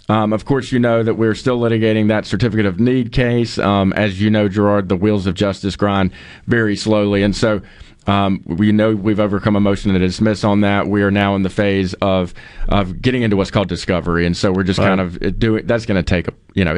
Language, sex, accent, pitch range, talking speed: English, male, American, 95-110 Hz, 235 wpm